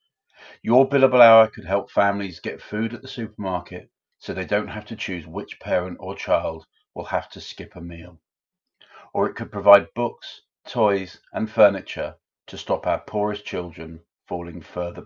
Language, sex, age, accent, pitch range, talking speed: English, male, 40-59, British, 90-120 Hz, 165 wpm